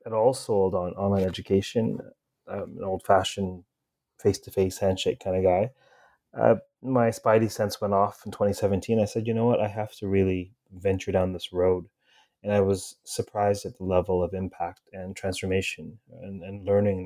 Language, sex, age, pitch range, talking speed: English, male, 30-49, 95-110 Hz, 170 wpm